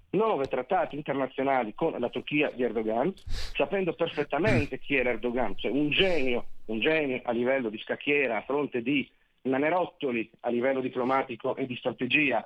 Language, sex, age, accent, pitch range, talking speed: Italian, male, 40-59, native, 130-165 Hz, 155 wpm